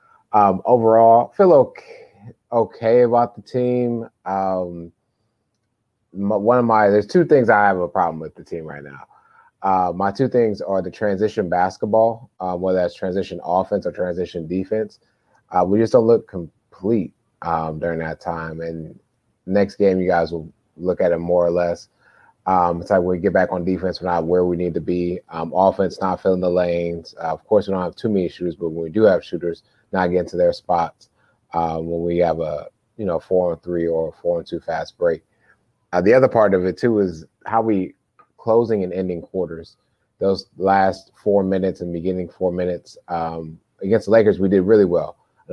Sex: male